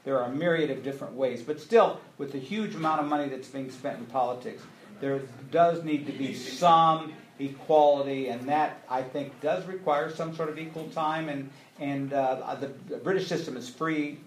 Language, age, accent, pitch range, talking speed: English, 50-69, American, 125-160 Hz, 195 wpm